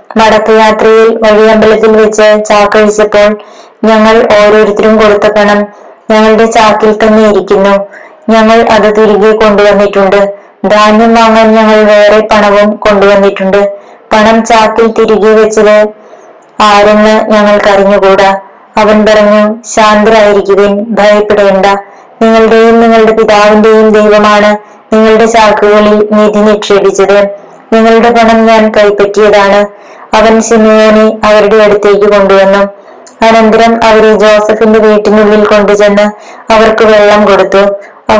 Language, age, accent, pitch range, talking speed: Malayalam, 20-39, native, 205-220 Hz, 95 wpm